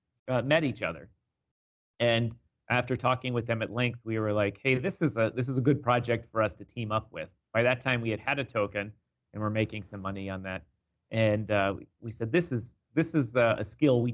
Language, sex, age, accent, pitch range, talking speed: English, male, 30-49, American, 100-125 Hz, 240 wpm